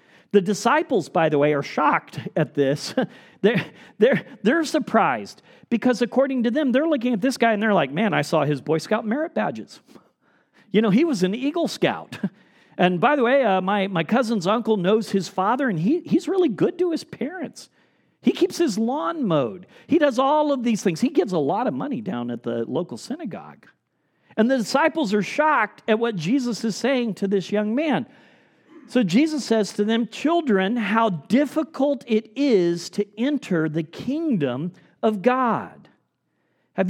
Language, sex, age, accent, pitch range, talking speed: English, male, 40-59, American, 185-260 Hz, 185 wpm